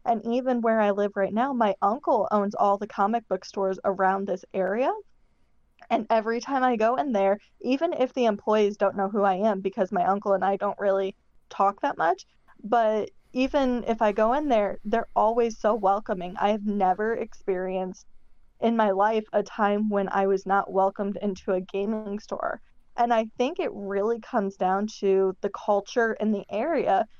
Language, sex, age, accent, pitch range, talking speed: English, female, 20-39, American, 195-230 Hz, 190 wpm